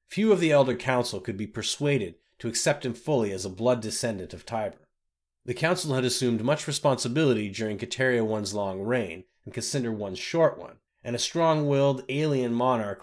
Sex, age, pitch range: male, 30-49, 110-140 Hz